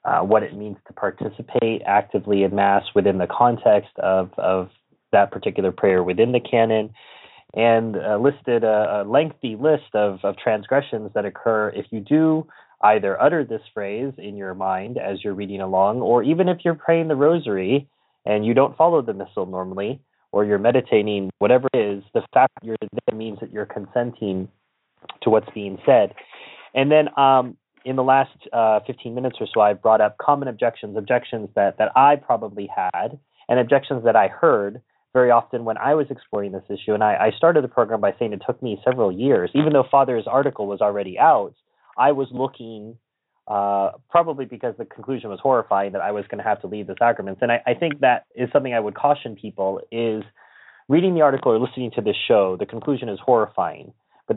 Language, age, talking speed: English, 30-49, 200 wpm